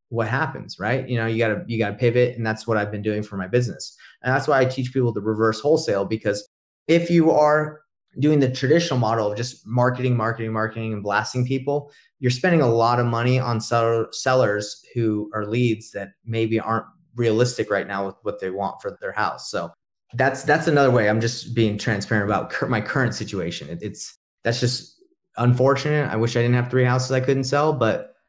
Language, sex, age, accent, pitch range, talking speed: English, male, 30-49, American, 110-135 Hz, 210 wpm